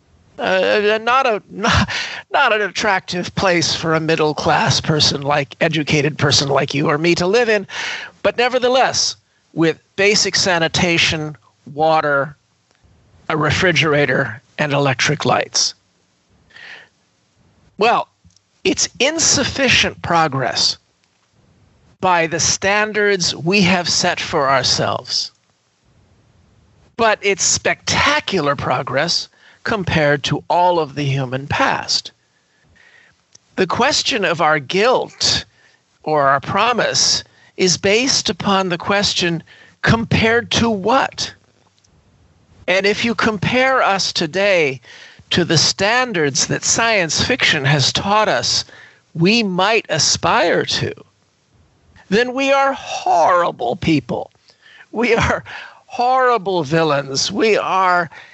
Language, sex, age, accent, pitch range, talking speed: English, male, 40-59, American, 145-200 Hz, 105 wpm